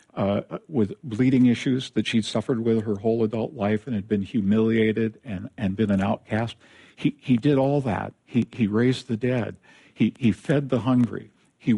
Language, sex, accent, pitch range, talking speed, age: English, male, American, 100-125 Hz, 195 wpm, 50-69